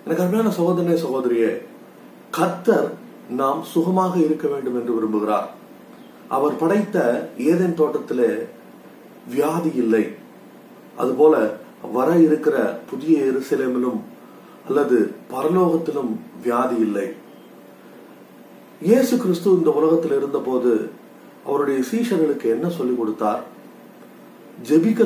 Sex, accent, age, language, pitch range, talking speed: male, native, 30-49, Tamil, 120-170 Hz, 85 wpm